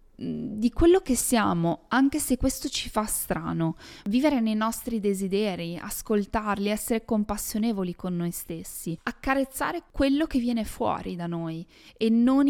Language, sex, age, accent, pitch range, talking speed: Italian, female, 20-39, native, 190-250 Hz, 140 wpm